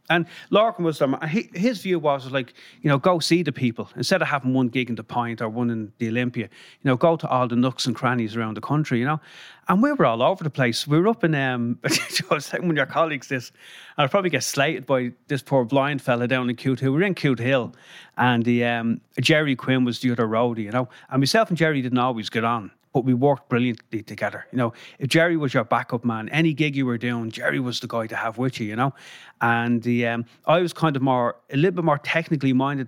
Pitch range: 120-150 Hz